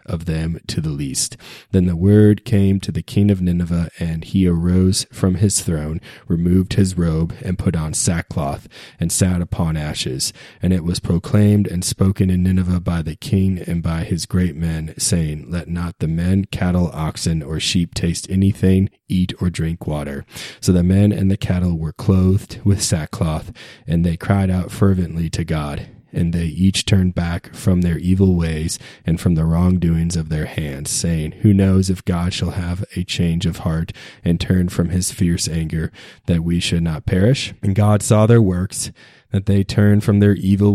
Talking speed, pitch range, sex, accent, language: 190 wpm, 85-100 Hz, male, American, English